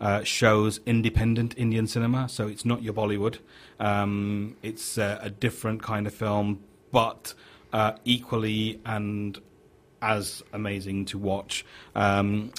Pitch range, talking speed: 100-115 Hz, 130 wpm